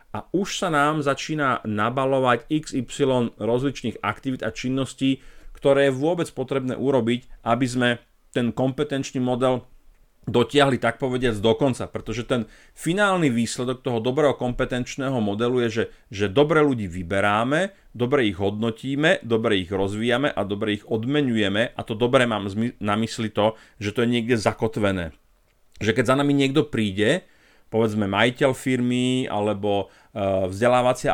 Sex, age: male, 40-59